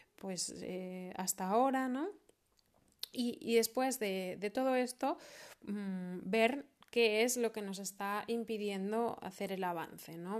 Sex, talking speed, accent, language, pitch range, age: female, 140 wpm, Spanish, Spanish, 190-230 Hz, 20-39